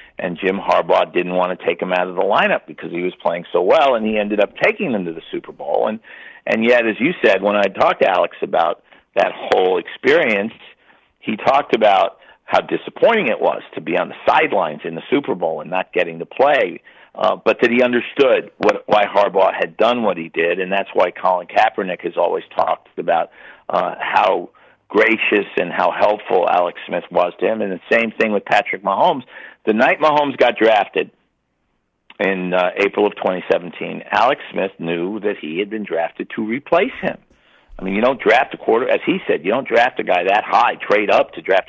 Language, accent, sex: English, American, male